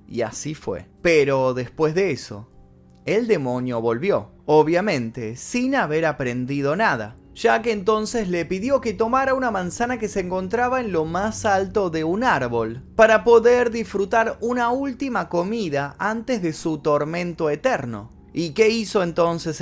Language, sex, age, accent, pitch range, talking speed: Spanish, male, 20-39, Argentinian, 140-215 Hz, 150 wpm